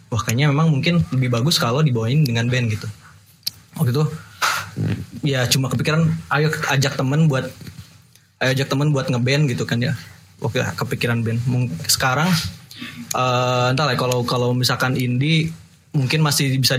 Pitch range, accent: 125-145 Hz, native